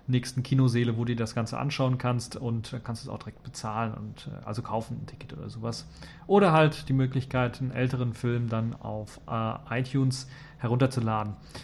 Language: German